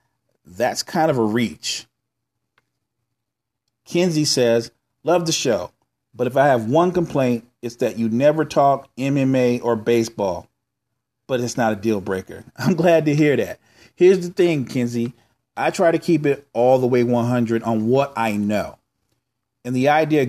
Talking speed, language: 165 wpm, English